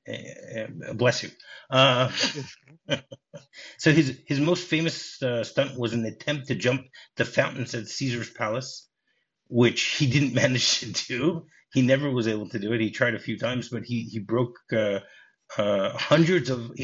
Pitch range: 115-140 Hz